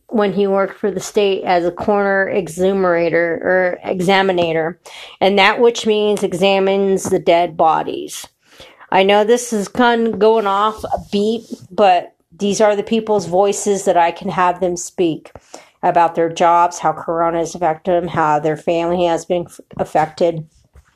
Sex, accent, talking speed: female, American, 160 wpm